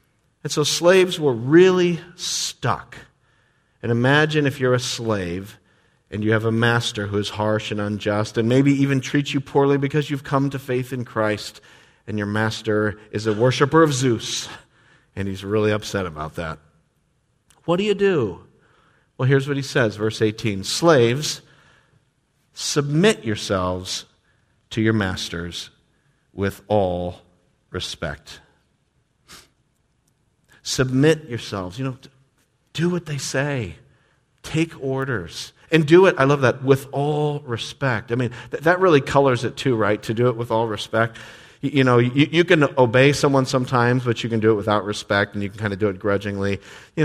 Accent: American